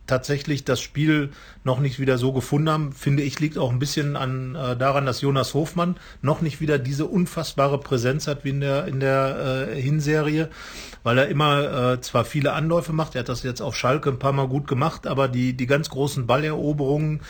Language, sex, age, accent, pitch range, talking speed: German, male, 40-59, German, 125-150 Hz, 210 wpm